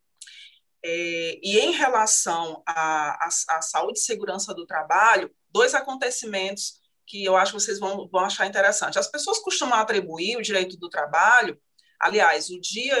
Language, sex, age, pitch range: Portuguese, female, 20-39, 190-265 Hz